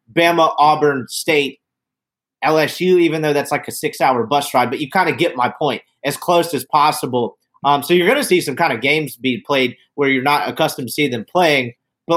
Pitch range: 145-195 Hz